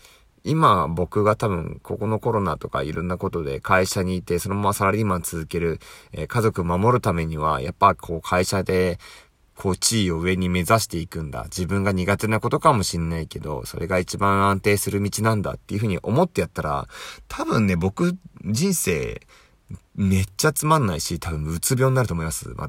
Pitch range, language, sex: 85-120 Hz, Japanese, male